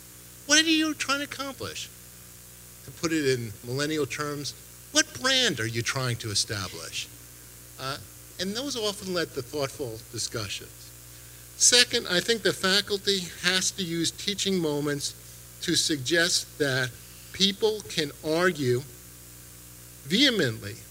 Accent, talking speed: American, 125 wpm